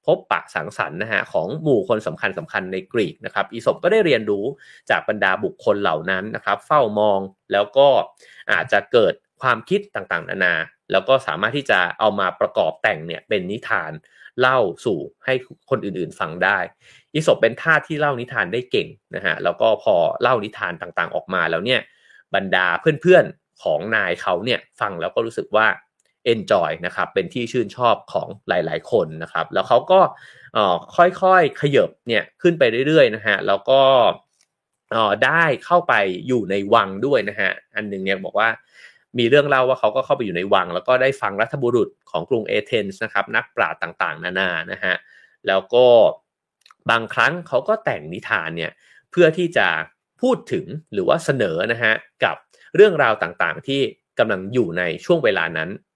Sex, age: male, 30-49